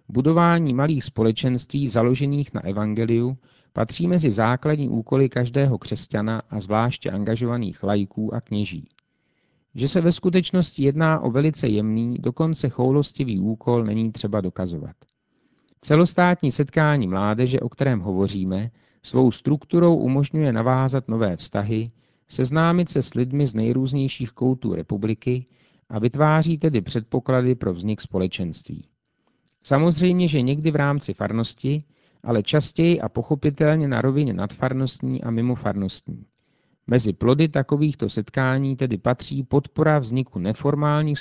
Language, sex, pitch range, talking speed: Czech, male, 110-145 Hz, 120 wpm